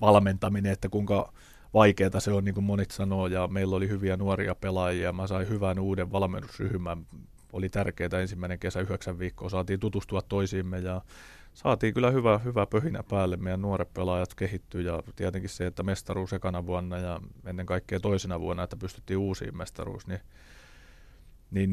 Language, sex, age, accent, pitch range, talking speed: Finnish, male, 30-49, native, 95-100 Hz, 165 wpm